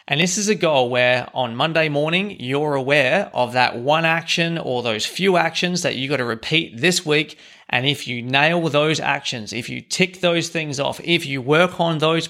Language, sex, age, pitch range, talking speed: English, male, 30-49, 125-165 Hz, 210 wpm